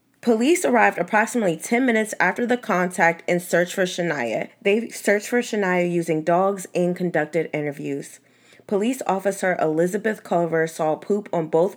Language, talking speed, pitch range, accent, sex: English, 150 wpm, 165-205 Hz, American, female